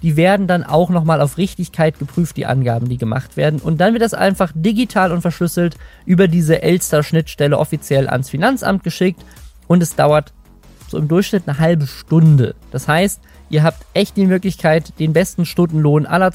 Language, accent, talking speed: German, German, 175 wpm